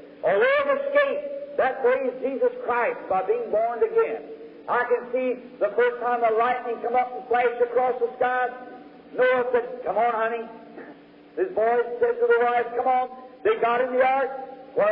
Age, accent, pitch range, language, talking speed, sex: 50-69, American, 245-290 Hz, English, 180 wpm, male